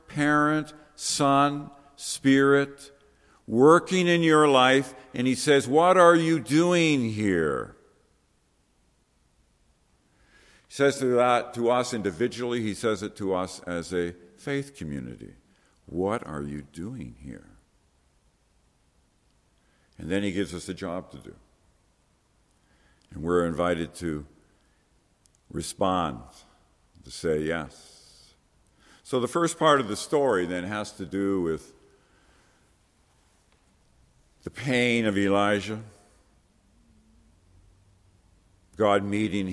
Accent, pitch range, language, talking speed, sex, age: American, 85-130 Hz, English, 105 wpm, male, 50-69